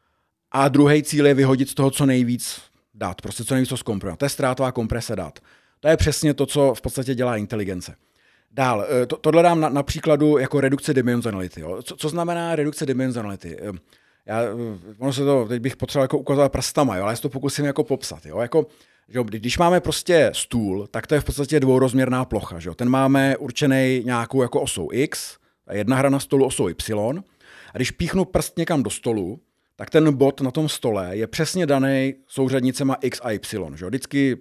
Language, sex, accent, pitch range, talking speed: Czech, male, native, 110-145 Hz, 185 wpm